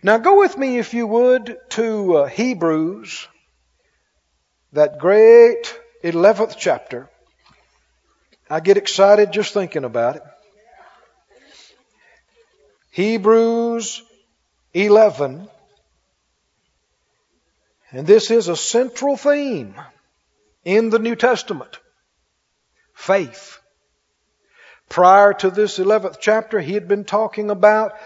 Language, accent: English, American